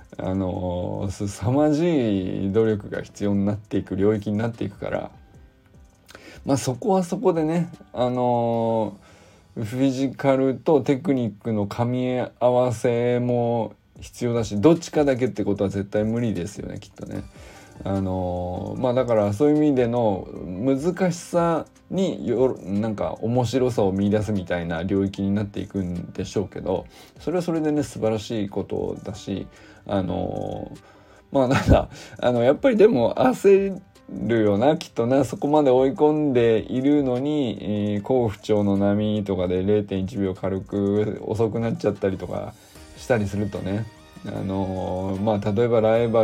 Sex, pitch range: male, 100-125 Hz